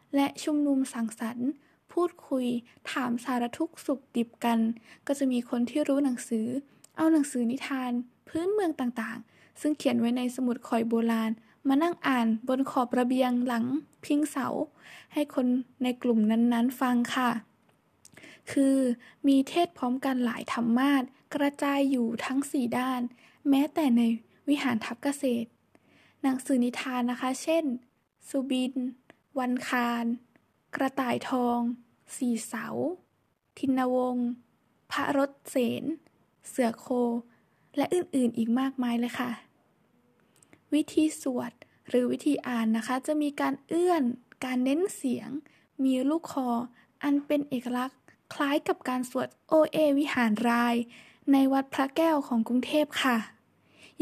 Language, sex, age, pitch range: Thai, female, 10-29, 245-285 Hz